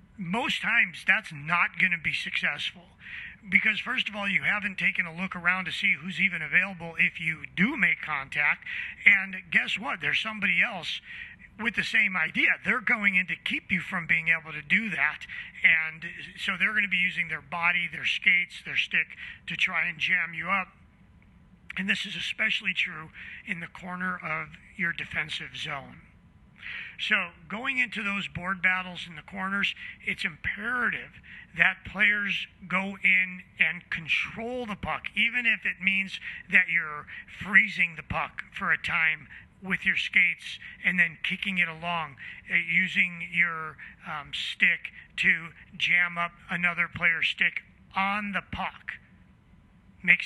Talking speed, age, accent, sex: 160 wpm, 40-59, American, male